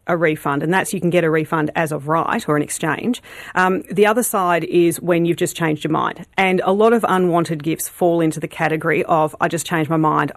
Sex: female